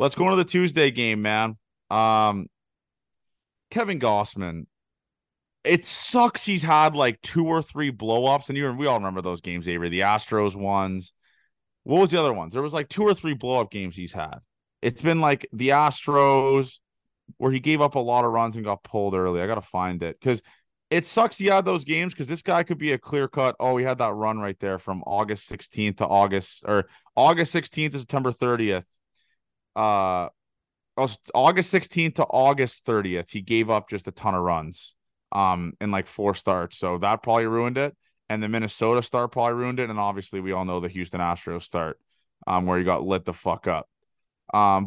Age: 20-39